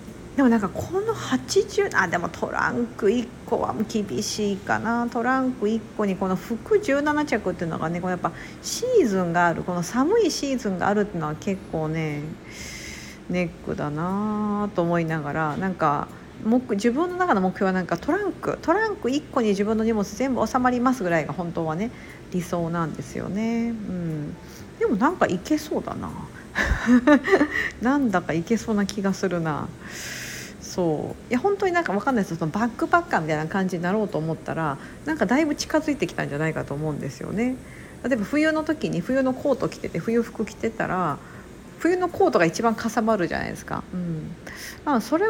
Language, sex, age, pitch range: Japanese, female, 50-69, 180-275 Hz